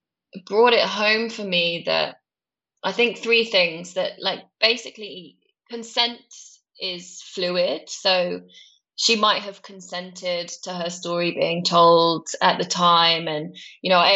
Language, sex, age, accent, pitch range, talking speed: English, female, 10-29, British, 170-200 Hz, 140 wpm